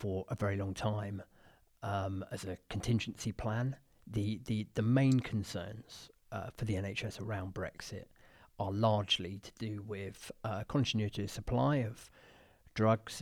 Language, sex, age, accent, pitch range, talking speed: English, male, 40-59, British, 100-120 Hz, 140 wpm